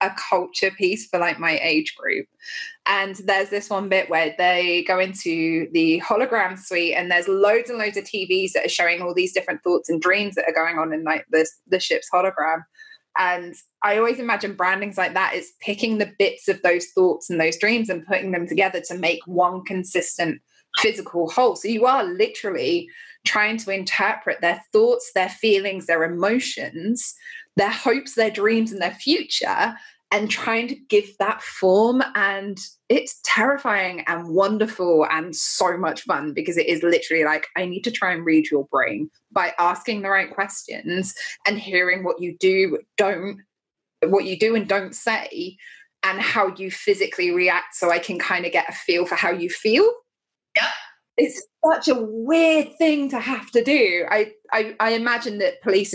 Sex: female